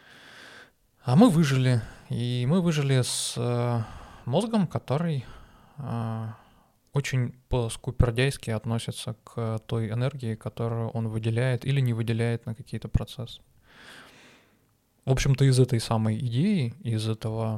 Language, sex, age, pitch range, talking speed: Russian, male, 20-39, 115-135 Hz, 105 wpm